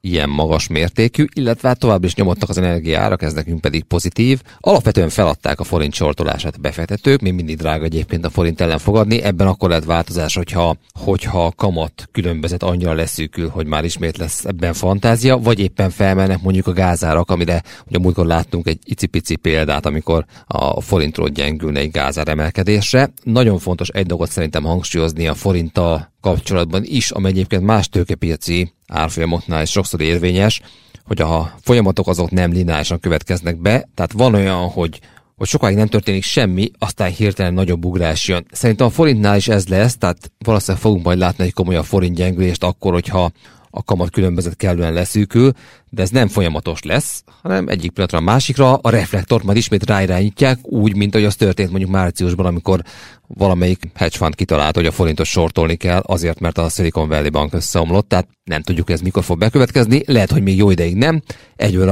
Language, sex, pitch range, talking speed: Hungarian, male, 85-100 Hz, 170 wpm